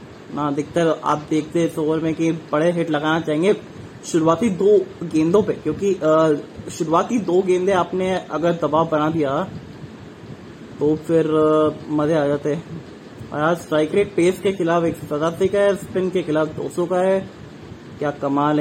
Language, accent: English, Indian